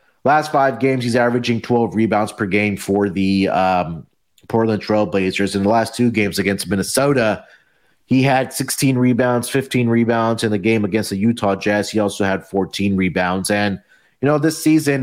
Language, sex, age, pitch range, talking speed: English, male, 30-49, 95-120 Hz, 180 wpm